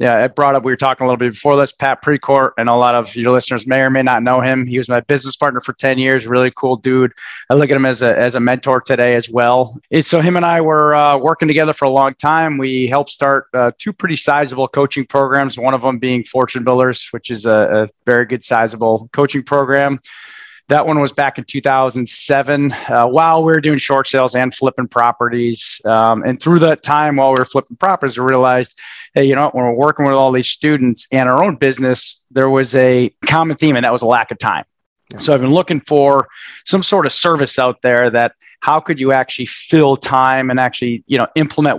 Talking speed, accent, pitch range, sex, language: 230 wpm, American, 125-145 Hz, male, English